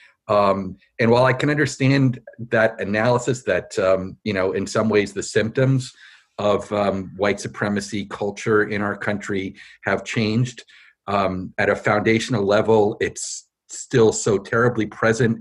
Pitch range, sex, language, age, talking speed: 100-120 Hz, male, English, 50-69, 145 wpm